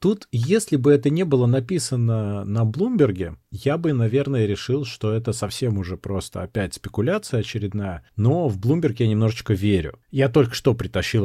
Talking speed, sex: 165 wpm, male